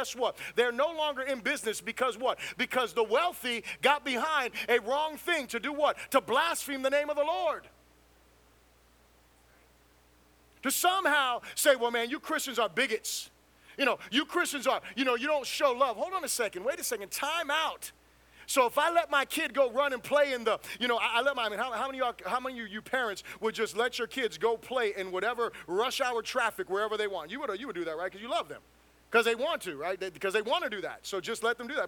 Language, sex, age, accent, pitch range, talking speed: English, male, 30-49, American, 190-295 Hz, 245 wpm